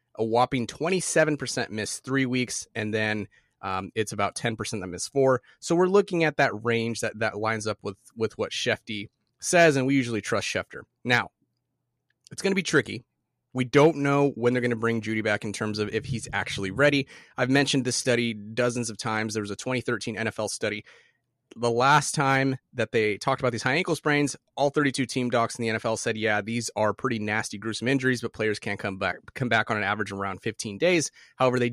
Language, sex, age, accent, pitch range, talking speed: English, male, 30-49, American, 110-135 Hz, 215 wpm